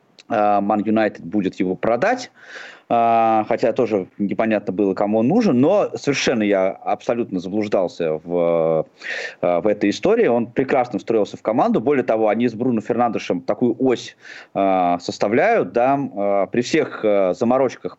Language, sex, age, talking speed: Russian, male, 20-39, 130 wpm